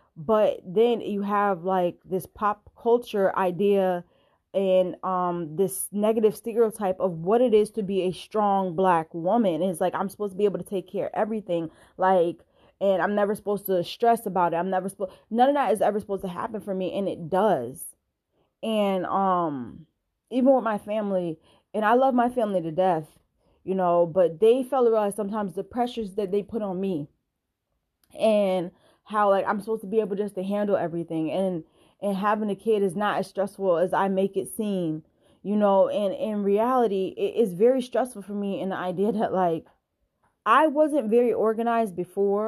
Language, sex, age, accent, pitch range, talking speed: English, female, 20-39, American, 185-220 Hz, 195 wpm